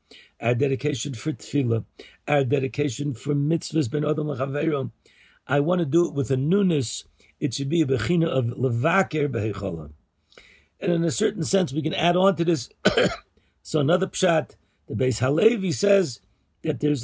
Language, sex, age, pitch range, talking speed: English, male, 50-69, 125-160 Hz, 160 wpm